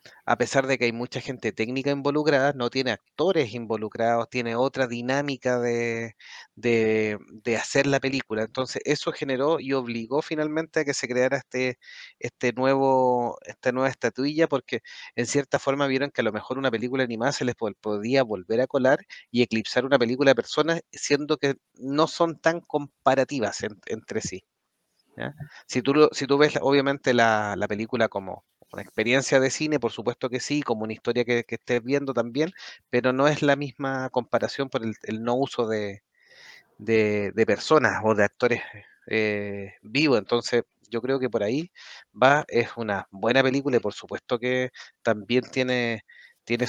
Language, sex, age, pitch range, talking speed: Spanish, male, 30-49, 115-135 Hz, 175 wpm